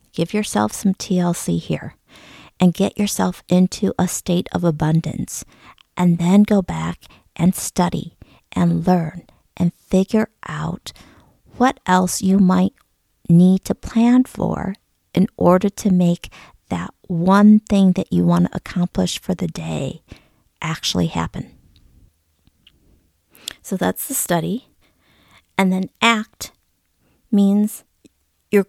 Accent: American